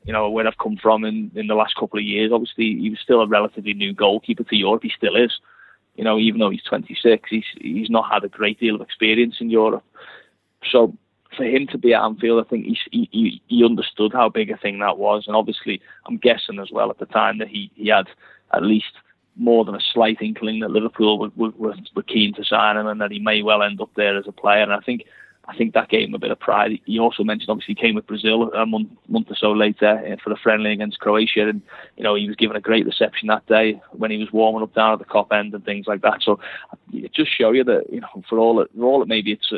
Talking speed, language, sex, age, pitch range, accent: 260 wpm, English, male, 20-39, 105-115 Hz, British